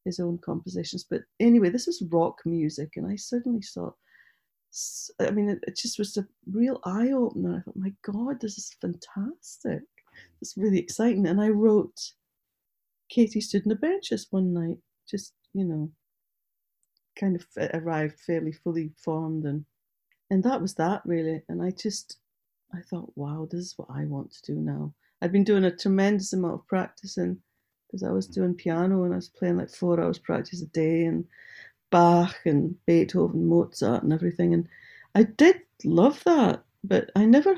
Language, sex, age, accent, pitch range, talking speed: English, female, 40-59, British, 165-205 Hz, 175 wpm